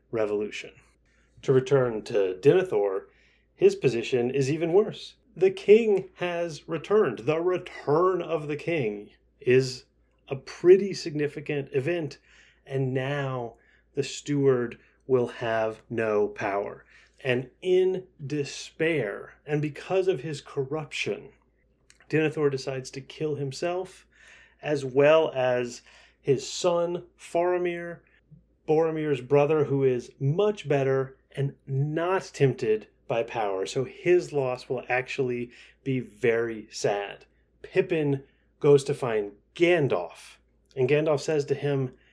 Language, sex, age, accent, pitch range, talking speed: English, male, 30-49, American, 135-170 Hz, 115 wpm